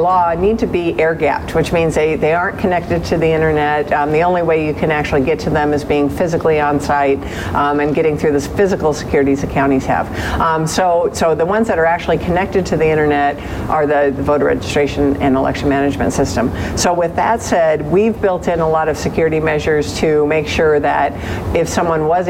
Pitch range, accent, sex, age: 145-170 Hz, American, female, 50-69